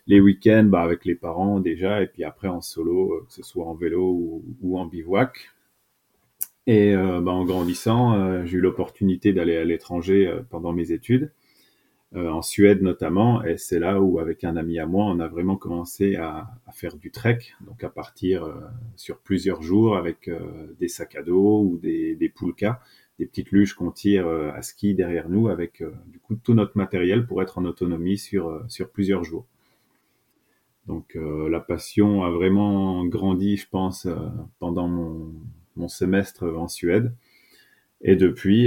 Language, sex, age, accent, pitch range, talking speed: French, male, 30-49, French, 85-105 Hz, 185 wpm